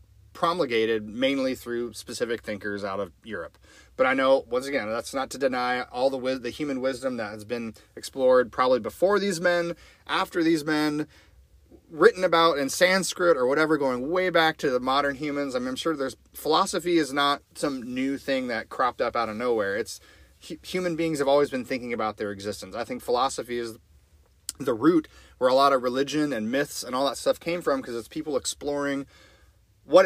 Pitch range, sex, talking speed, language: 115-155 Hz, male, 195 wpm, English